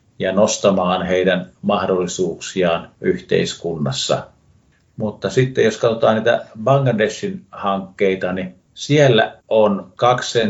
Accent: native